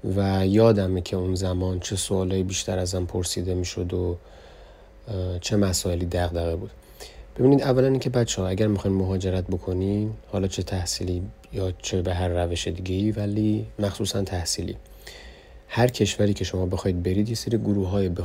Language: Persian